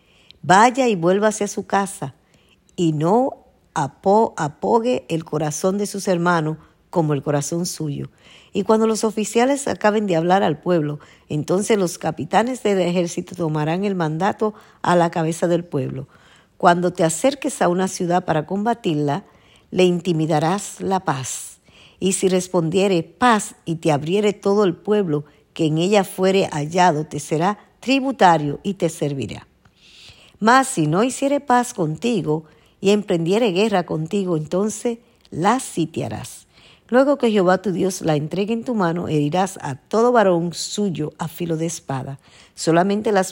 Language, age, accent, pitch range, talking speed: Spanish, 50-69, American, 160-205 Hz, 150 wpm